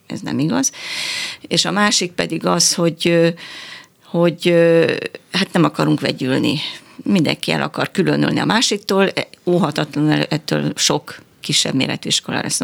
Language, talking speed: Hungarian, 130 wpm